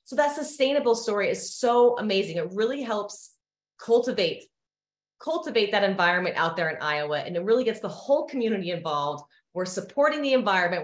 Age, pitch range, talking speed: 30-49, 180-250 Hz, 165 wpm